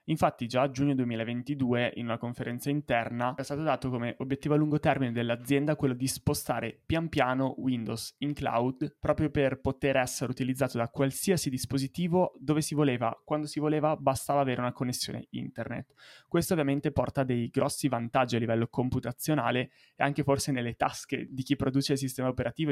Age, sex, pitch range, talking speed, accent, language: 20-39, male, 120-140 Hz, 170 wpm, native, Italian